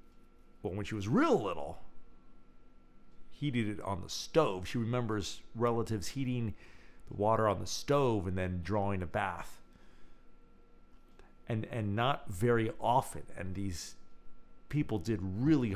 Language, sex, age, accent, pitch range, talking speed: English, male, 40-59, American, 80-110 Hz, 135 wpm